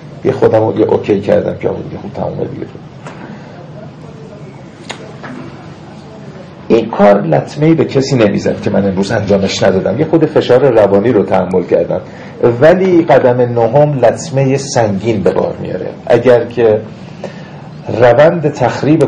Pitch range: 115-150 Hz